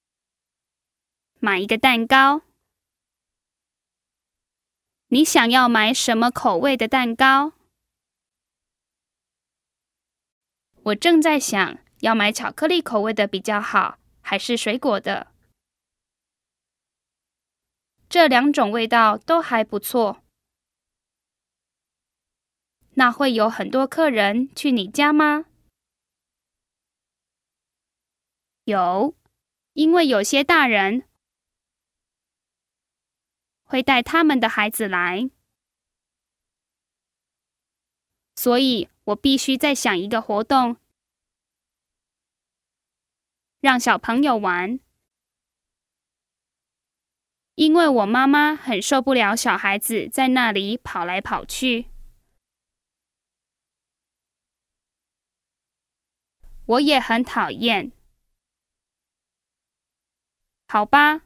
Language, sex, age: English, female, 10-29